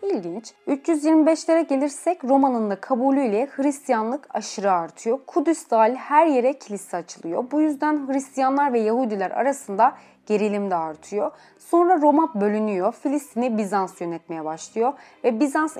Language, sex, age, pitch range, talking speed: Turkish, female, 30-49, 205-290 Hz, 120 wpm